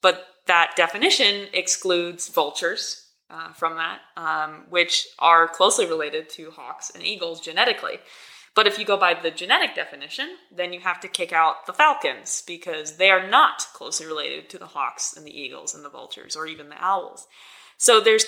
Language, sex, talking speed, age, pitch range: English, female, 180 wpm, 20-39, 155-195 Hz